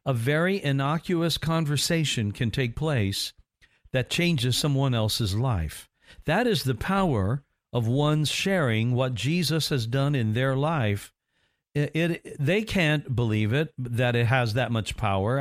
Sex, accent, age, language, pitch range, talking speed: male, American, 50-69, English, 120-155 Hz, 150 wpm